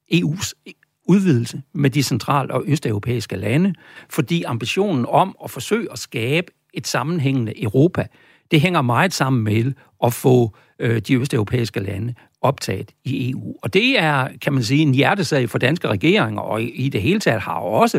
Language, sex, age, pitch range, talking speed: Danish, male, 60-79, 120-155 Hz, 165 wpm